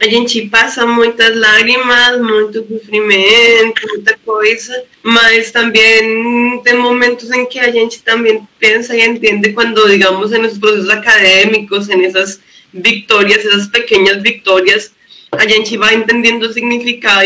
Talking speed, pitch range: 135 wpm, 210-230 Hz